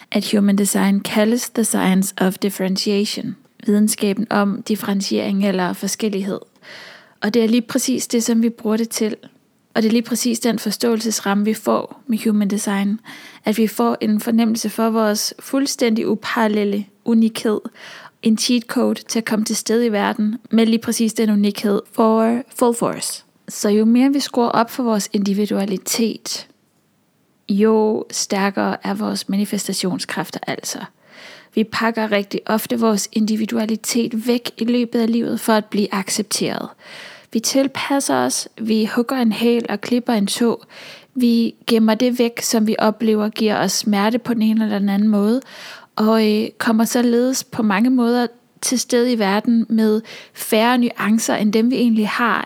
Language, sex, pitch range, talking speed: English, female, 210-235 Hz, 160 wpm